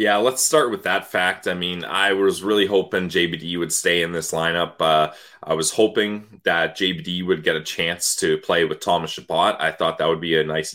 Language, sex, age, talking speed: English, male, 20-39, 225 wpm